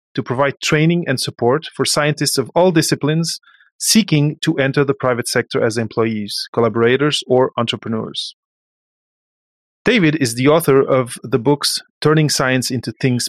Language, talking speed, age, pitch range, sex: English, 145 wpm, 30-49, 125-165 Hz, male